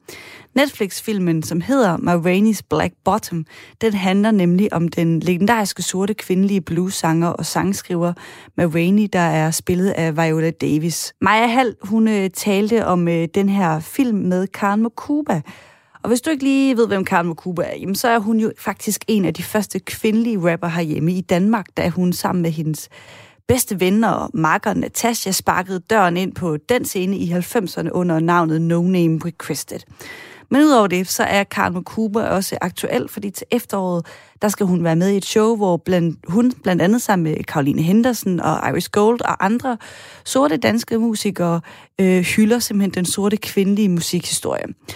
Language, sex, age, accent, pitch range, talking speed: Danish, female, 30-49, native, 175-220 Hz, 170 wpm